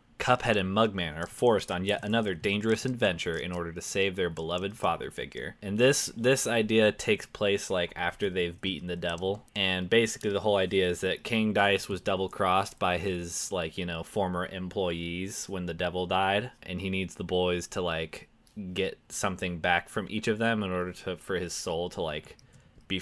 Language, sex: English, male